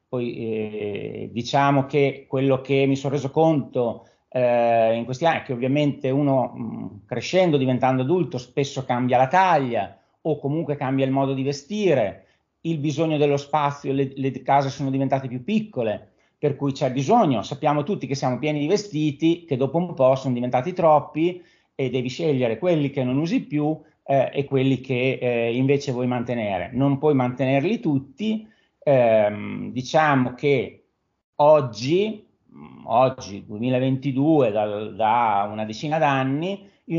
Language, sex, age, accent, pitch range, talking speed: Italian, male, 40-59, native, 125-150 Hz, 150 wpm